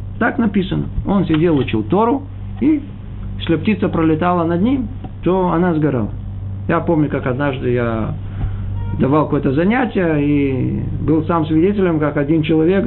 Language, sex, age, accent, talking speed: Russian, male, 50-69, native, 140 wpm